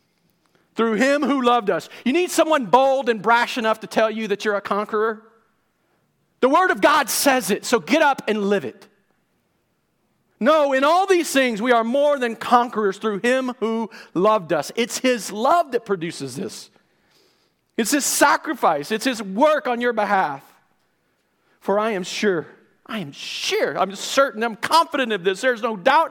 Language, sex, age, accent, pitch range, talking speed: English, male, 40-59, American, 225-315 Hz, 175 wpm